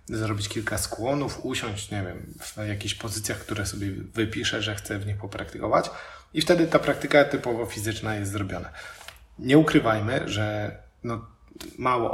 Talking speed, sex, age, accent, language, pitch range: 150 wpm, male, 20-39, native, Polish, 100-115 Hz